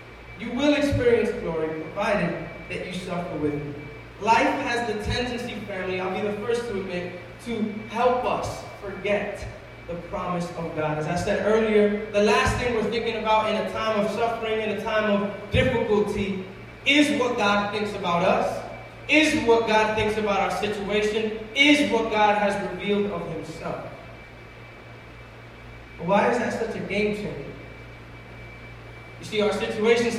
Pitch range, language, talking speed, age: 175-230 Hz, English, 155 wpm, 20-39